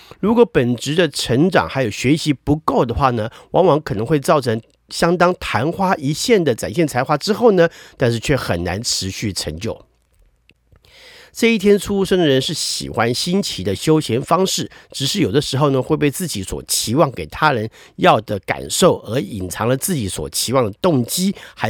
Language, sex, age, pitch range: Chinese, male, 50-69, 120-170 Hz